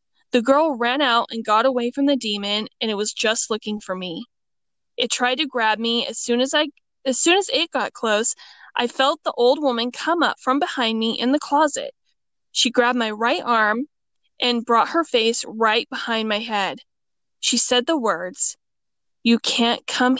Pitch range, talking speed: 225-275 Hz, 195 wpm